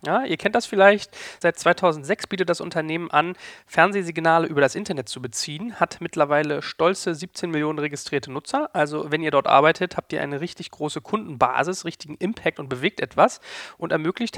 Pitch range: 150-190 Hz